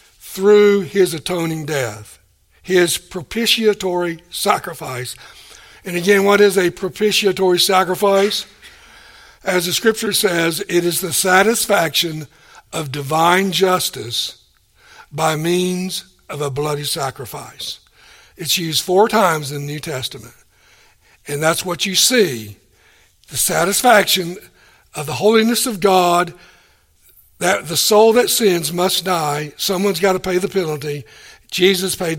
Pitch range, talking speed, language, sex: 165-215 Hz, 125 wpm, English, male